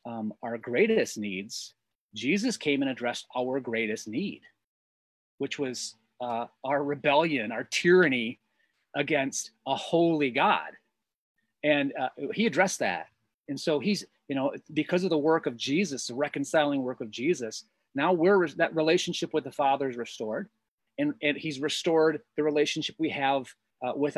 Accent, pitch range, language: American, 125-165 Hz, English